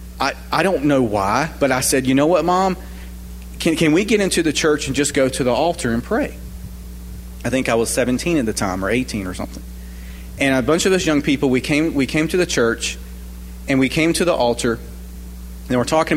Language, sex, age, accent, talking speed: English, male, 40-59, American, 230 wpm